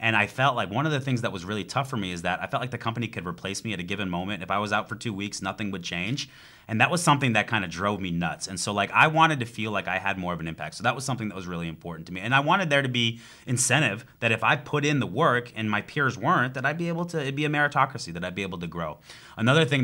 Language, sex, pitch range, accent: English, male, 100-135 Hz, American